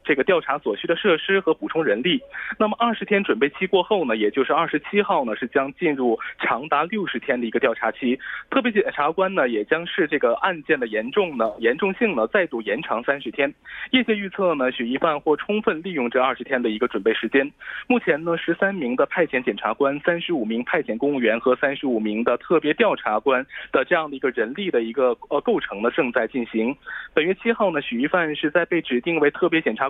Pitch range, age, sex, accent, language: 130-200 Hz, 20-39, male, Chinese, Korean